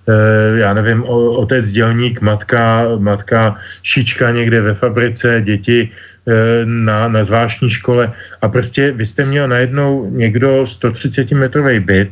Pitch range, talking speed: 110-135 Hz, 125 wpm